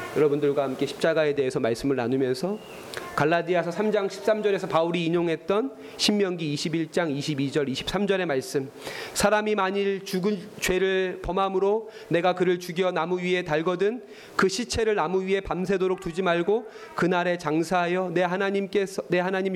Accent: native